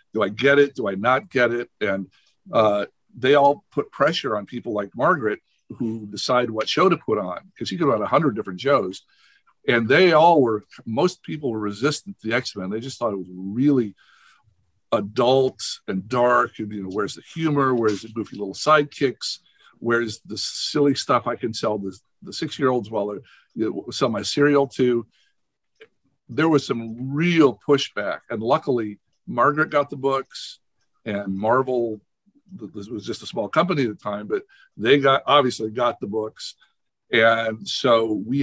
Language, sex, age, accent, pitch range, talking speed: English, male, 50-69, American, 105-140 Hz, 180 wpm